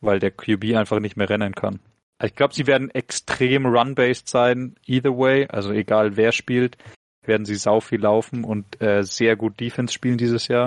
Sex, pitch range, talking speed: male, 105-120 Hz, 190 wpm